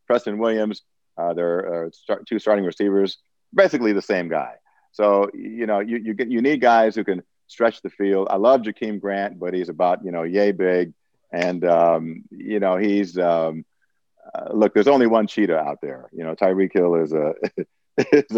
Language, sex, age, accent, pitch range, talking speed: English, male, 50-69, American, 80-105 Hz, 195 wpm